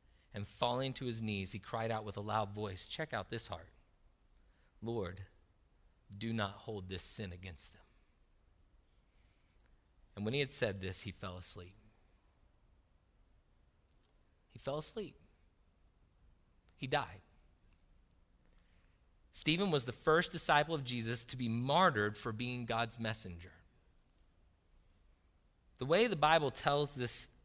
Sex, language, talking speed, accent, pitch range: male, English, 125 wpm, American, 95-145 Hz